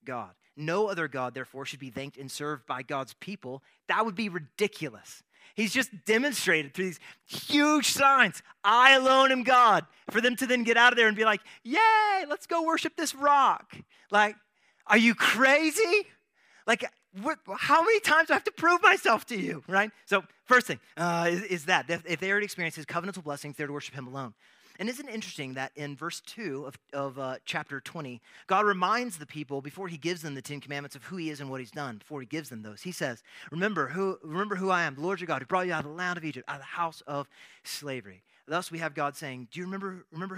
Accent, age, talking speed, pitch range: American, 30-49, 230 wpm, 145-210 Hz